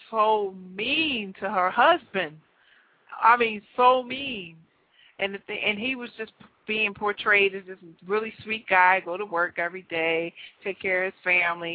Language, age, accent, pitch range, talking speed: English, 40-59, American, 175-210 Hz, 165 wpm